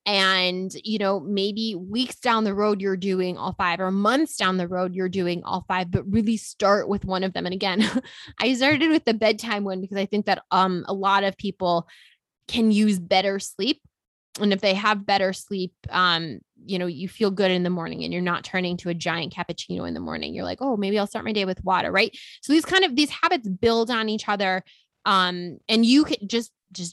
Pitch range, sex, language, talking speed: 185-230 Hz, female, English, 225 wpm